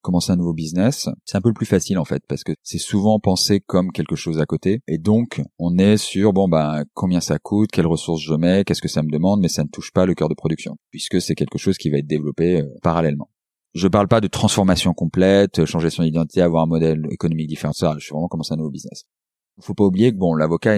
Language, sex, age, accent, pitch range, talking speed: French, male, 30-49, French, 85-100 Hz, 250 wpm